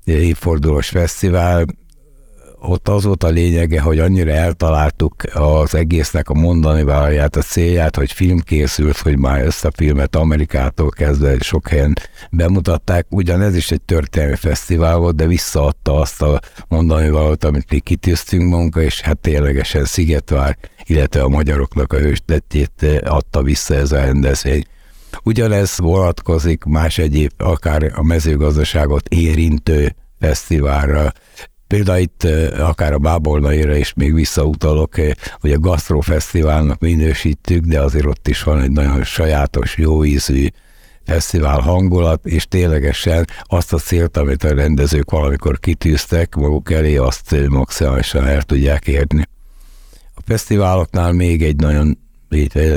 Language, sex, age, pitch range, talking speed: Hungarian, male, 60-79, 75-85 Hz, 130 wpm